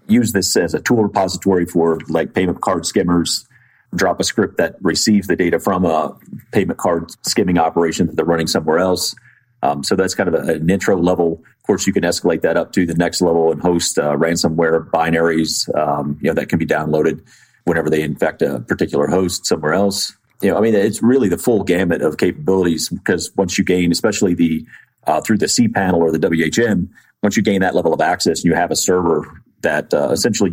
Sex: male